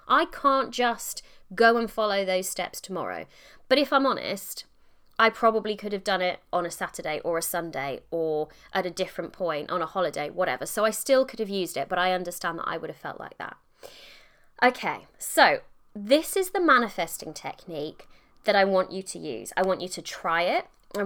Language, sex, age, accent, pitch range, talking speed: English, female, 20-39, British, 180-260 Hz, 200 wpm